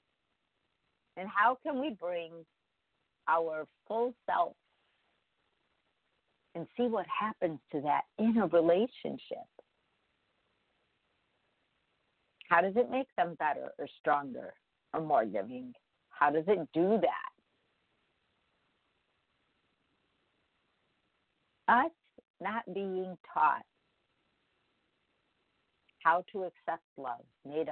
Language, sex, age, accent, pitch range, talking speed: English, female, 50-69, American, 160-215 Hz, 90 wpm